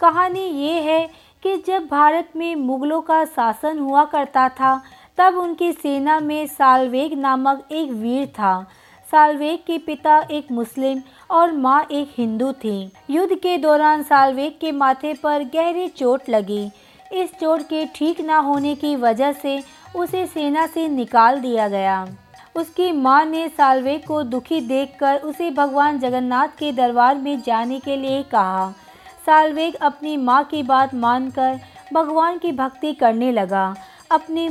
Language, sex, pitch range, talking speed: Hindi, female, 260-315 Hz, 150 wpm